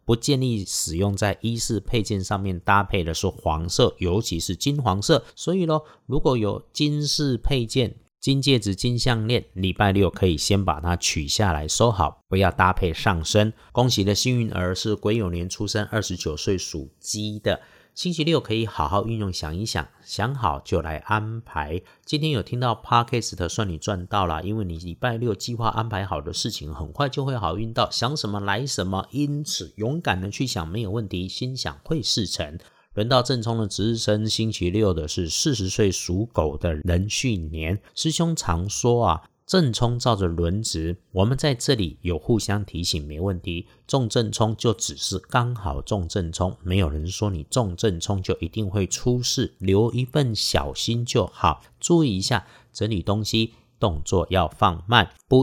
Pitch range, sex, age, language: 90-120 Hz, male, 50-69, Chinese